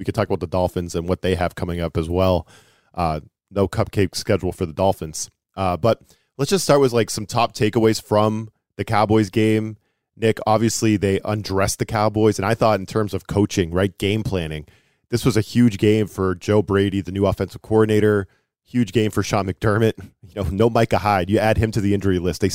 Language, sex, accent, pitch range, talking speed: English, male, American, 95-115 Hz, 215 wpm